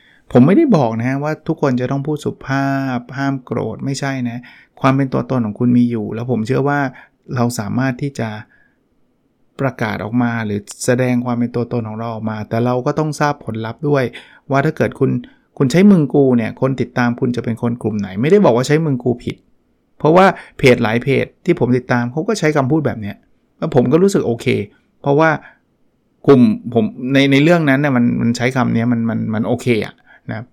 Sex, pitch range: male, 115-140 Hz